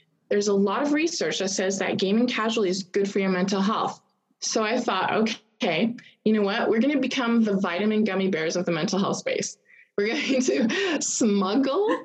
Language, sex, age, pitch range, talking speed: English, female, 20-39, 190-235 Hz, 205 wpm